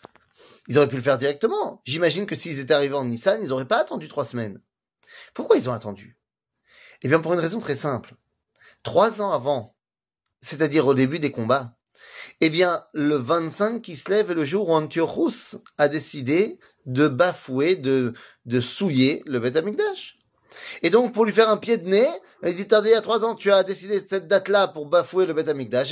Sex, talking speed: male, 195 wpm